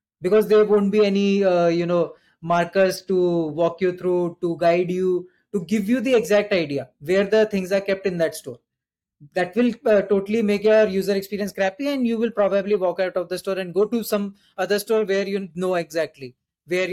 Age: 20-39